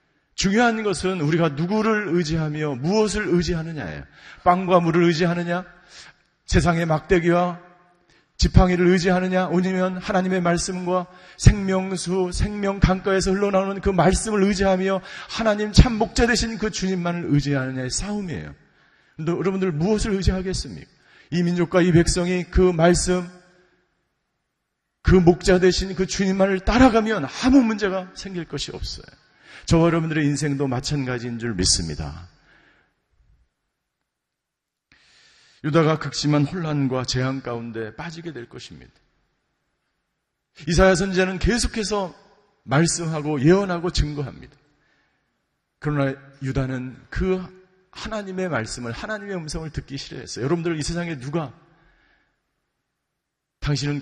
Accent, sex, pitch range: native, male, 145-190 Hz